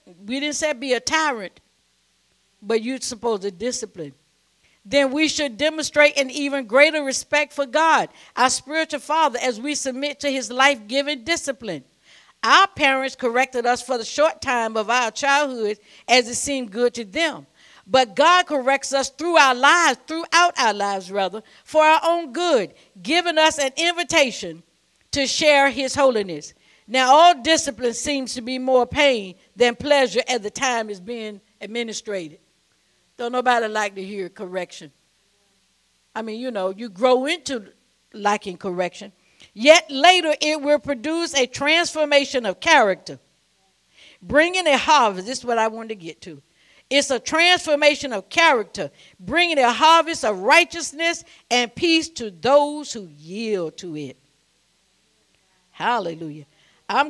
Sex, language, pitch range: female, English, 210-295 Hz